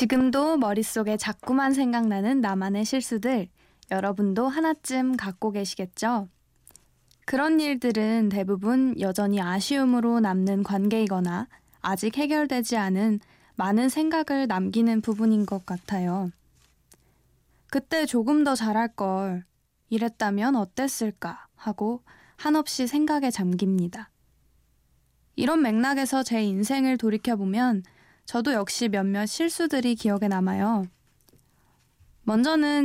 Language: Korean